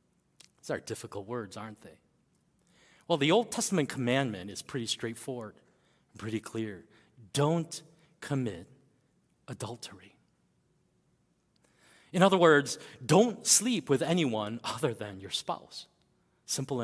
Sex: male